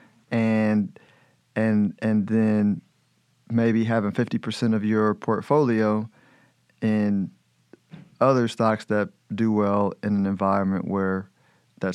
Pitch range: 100-110 Hz